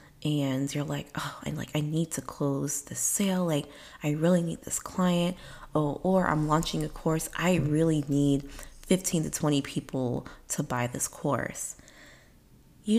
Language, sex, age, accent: English, female, 20-39, American